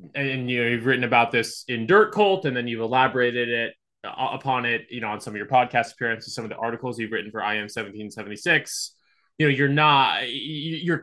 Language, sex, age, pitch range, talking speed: English, male, 20-39, 110-135 Hz, 210 wpm